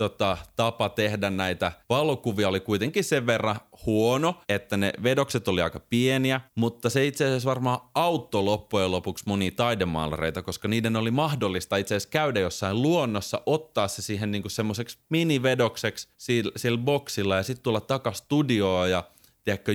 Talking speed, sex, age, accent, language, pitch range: 150 wpm, male, 30-49, native, Finnish, 95-125 Hz